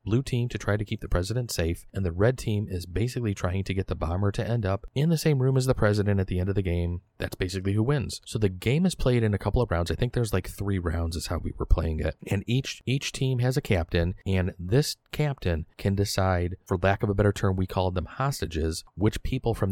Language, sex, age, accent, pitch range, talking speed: English, male, 30-49, American, 90-110 Hz, 265 wpm